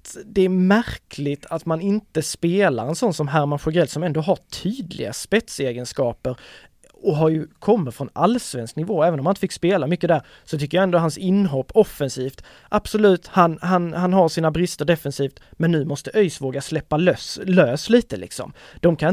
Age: 20-39